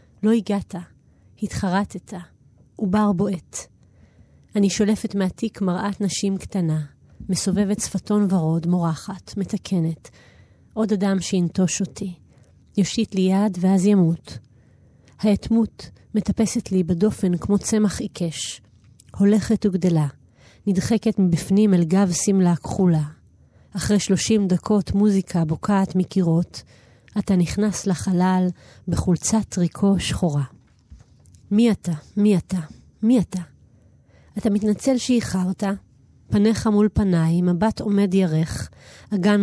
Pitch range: 170-205 Hz